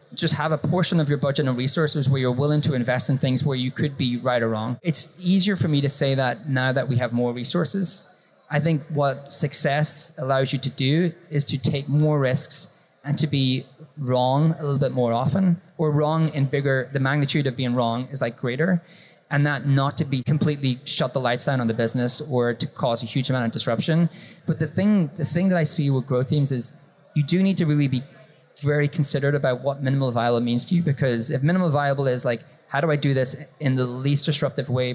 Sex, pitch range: male, 130-155 Hz